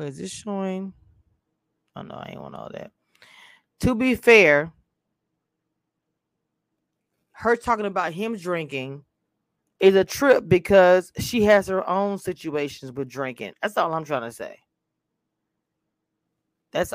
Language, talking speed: English, 125 wpm